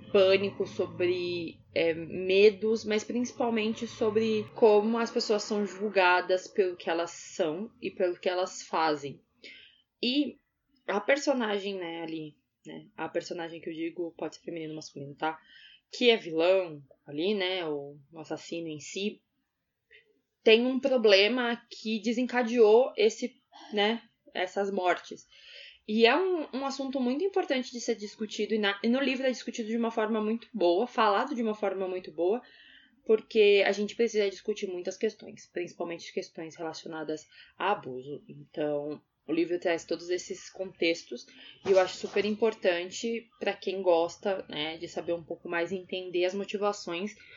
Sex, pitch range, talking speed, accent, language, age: female, 170-230 Hz, 150 wpm, Brazilian, Portuguese, 20-39